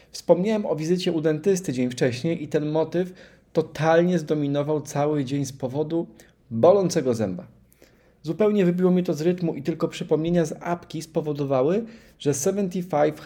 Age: 30-49